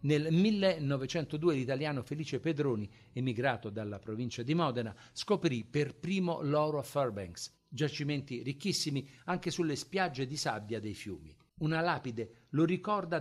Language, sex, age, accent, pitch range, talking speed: Italian, male, 50-69, native, 120-155 Hz, 130 wpm